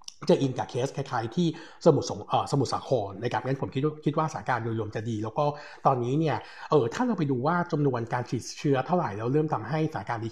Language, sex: Thai, male